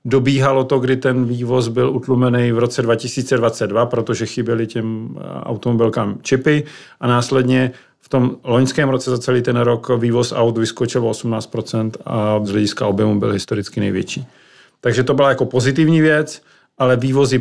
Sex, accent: male, native